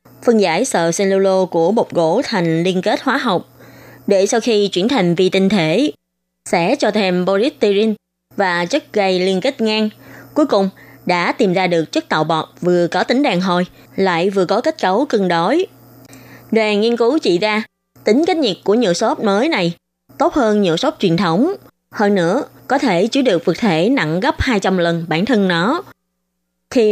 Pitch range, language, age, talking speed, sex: 170-220 Hz, Vietnamese, 20-39, 190 wpm, female